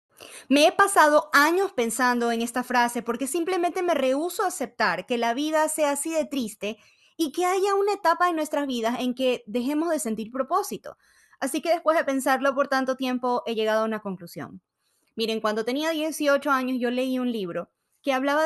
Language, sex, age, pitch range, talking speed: Spanish, female, 20-39, 220-295 Hz, 190 wpm